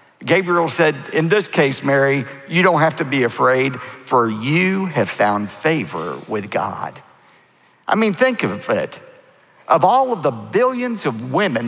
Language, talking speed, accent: English, 160 wpm, American